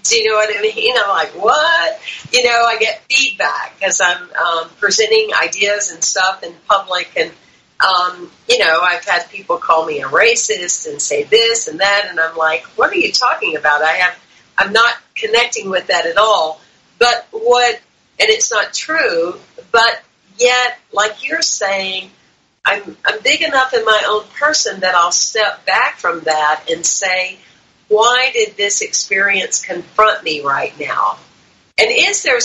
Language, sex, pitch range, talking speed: English, female, 175-255 Hz, 170 wpm